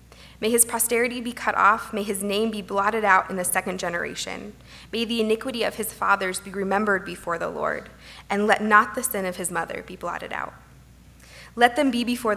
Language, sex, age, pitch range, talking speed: English, female, 20-39, 180-230 Hz, 205 wpm